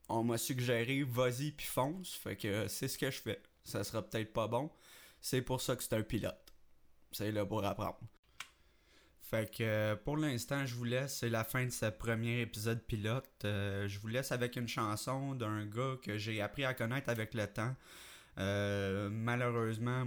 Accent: Canadian